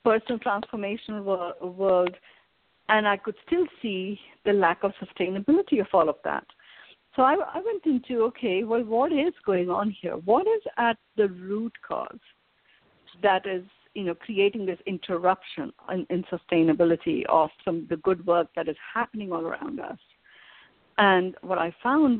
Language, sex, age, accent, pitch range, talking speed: English, female, 50-69, Indian, 175-225 Hz, 160 wpm